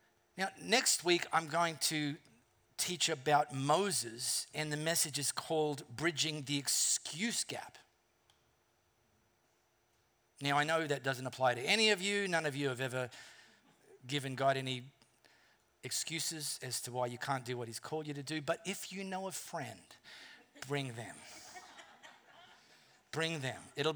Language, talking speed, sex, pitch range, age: English, 150 wpm, male, 135-170 Hz, 40-59